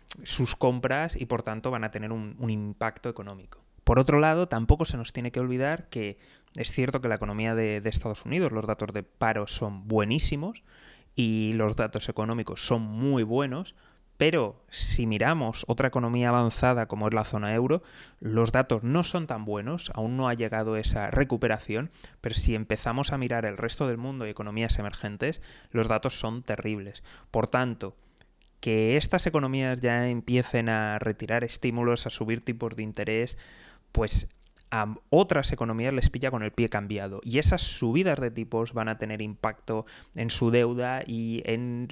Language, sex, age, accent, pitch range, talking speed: Spanish, male, 20-39, Spanish, 105-125 Hz, 175 wpm